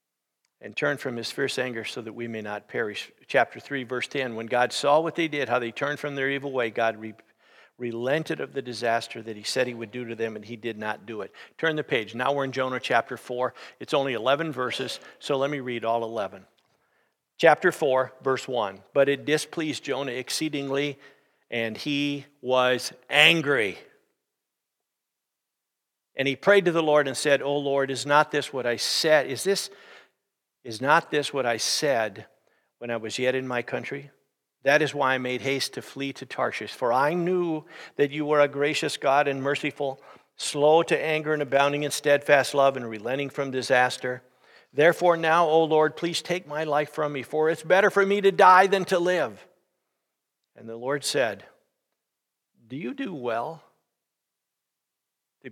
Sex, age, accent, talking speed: male, 50-69, American, 185 wpm